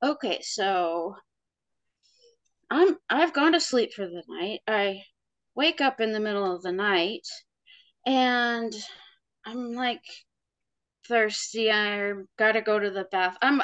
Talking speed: 145 wpm